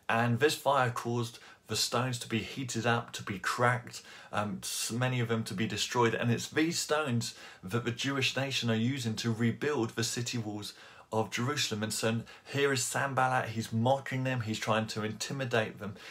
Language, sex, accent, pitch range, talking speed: English, male, British, 110-125 Hz, 185 wpm